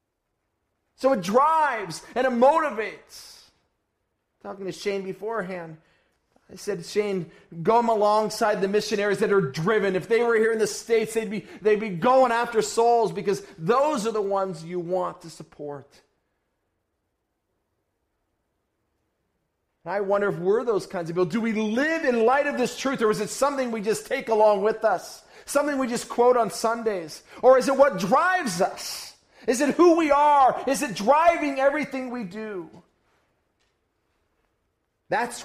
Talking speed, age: 155 wpm, 40-59